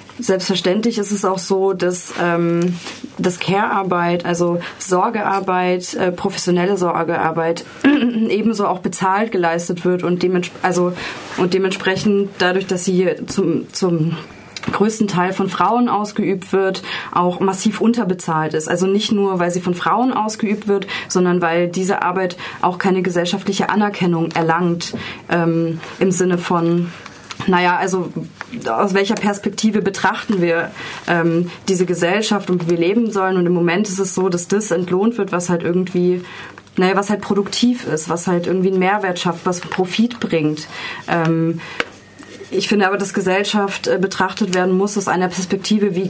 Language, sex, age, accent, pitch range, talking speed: German, female, 20-39, German, 175-200 Hz, 145 wpm